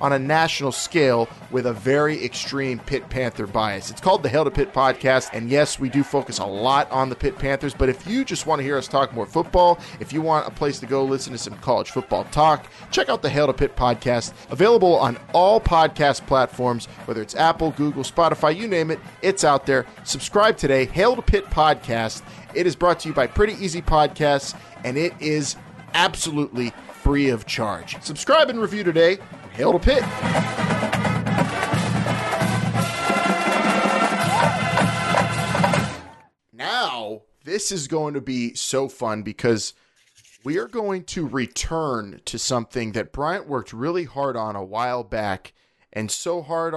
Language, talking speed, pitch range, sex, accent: English, 170 wpm, 125-160 Hz, male, American